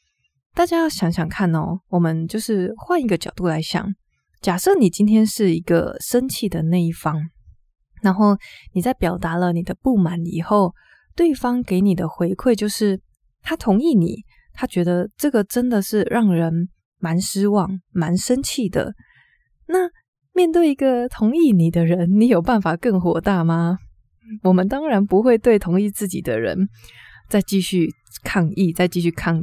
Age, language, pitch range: 20-39, Chinese, 175-220 Hz